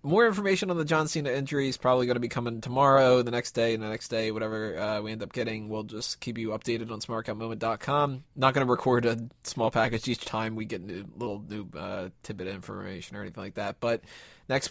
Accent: American